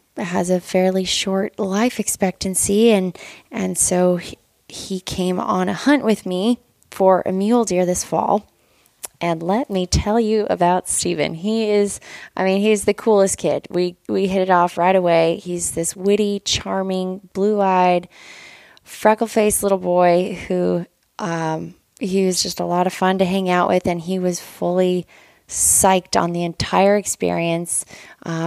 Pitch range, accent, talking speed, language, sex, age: 175-195 Hz, American, 160 wpm, English, female, 20-39